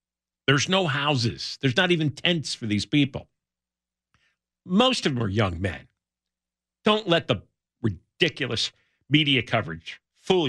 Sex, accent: male, American